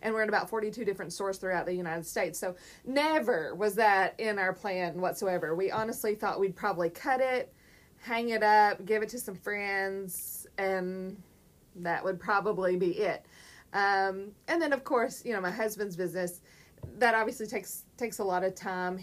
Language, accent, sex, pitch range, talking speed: English, American, female, 180-215 Hz, 185 wpm